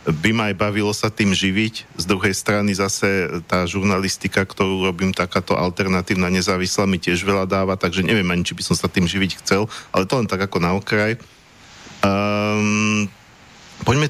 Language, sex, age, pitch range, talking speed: Slovak, male, 40-59, 95-110 Hz, 170 wpm